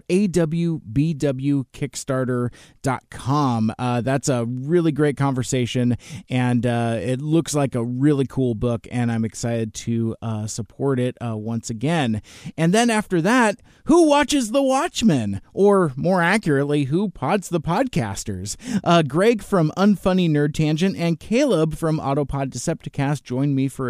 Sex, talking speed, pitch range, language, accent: male, 135 wpm, 125-175 Hz, English, American